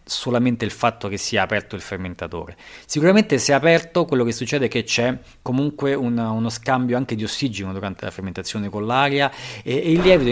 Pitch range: 100-135 Hz